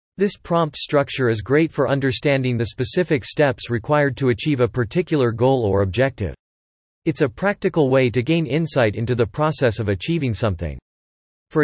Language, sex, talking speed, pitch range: English, male, 165 wpm, 115-155 Hz